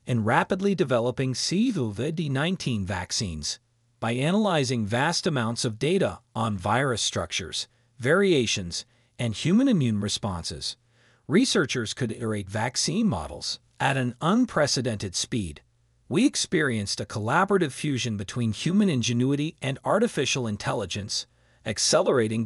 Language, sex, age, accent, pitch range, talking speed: Italian, male, 40-59, American, 110-150 Hz, 110 wpm